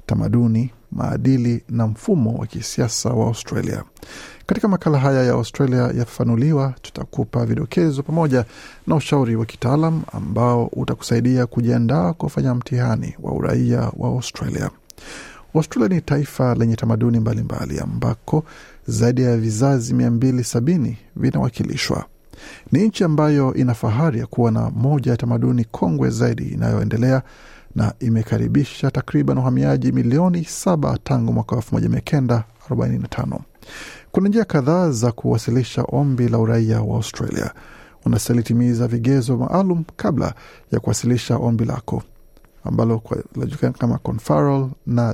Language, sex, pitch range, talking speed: Swahili, male, 115-140 Hz, 120 wpm